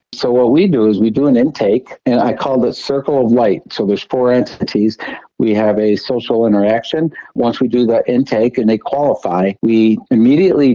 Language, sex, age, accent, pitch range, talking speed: English, male, 60-79, American, 110-125 Hz, 195 wpm